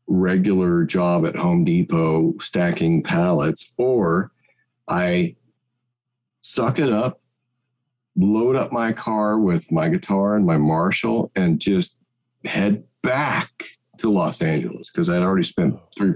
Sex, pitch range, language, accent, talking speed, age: male, 100-135 Hz, English, American, 125 wpm, 50-69